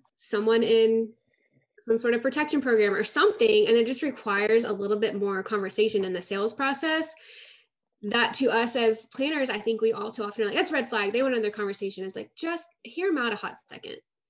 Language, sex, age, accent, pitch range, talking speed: English, female, 10-29, American, 210-275 Hz, 220 wpm